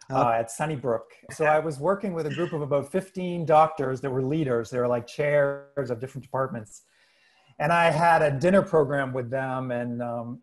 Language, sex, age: English, male, 40-59